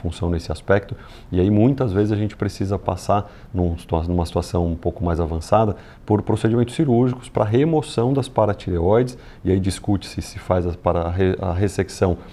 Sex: male